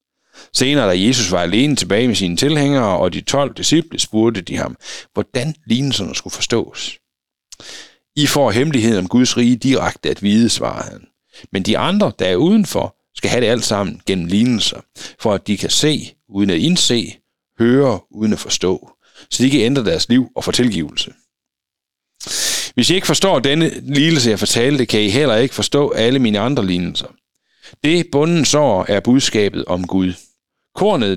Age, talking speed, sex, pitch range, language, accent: 60-79, 170 wpm, male, 100-140 Hz, Danish, native